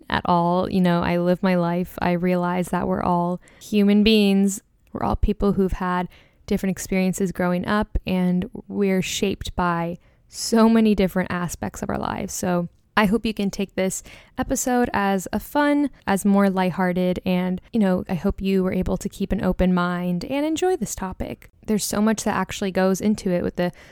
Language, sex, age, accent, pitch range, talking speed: English, female, 10-29, American, 180-210 Hz, 190 wpm